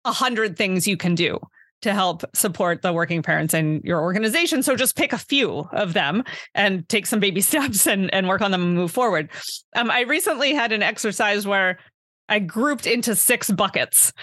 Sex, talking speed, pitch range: female, 200 wpm, 190-250 Hz